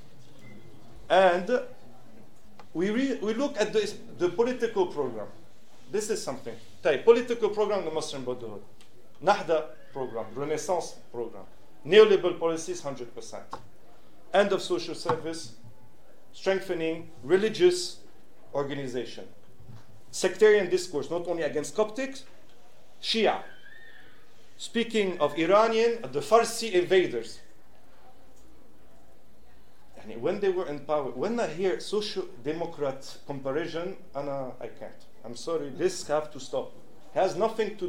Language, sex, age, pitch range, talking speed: German, male, 40-59, 140-215 Hz, 110 wpm